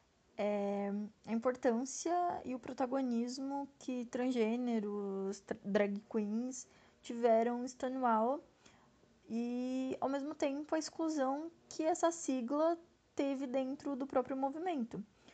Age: 20-39